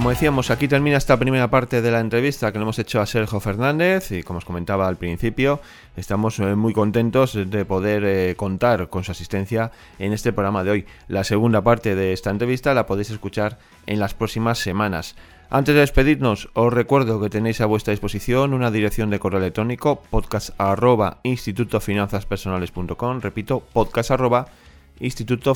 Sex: male